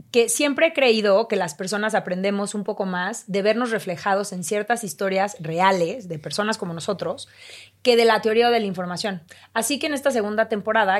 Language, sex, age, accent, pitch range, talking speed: Spanish, female, 30-49, Mexican, 185-230 Hz, 195 wpm